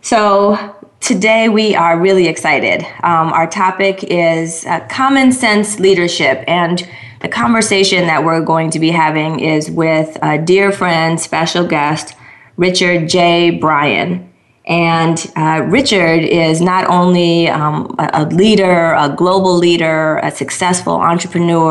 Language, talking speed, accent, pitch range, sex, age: English, 135 wpm, American, 155-180 Hz, female, 20-39